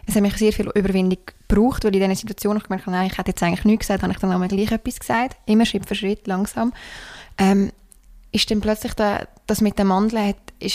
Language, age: German, 20-39